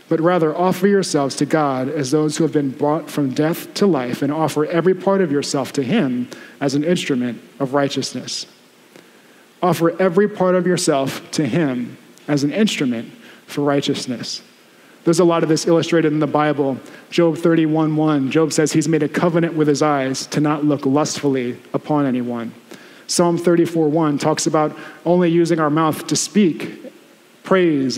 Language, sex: English, male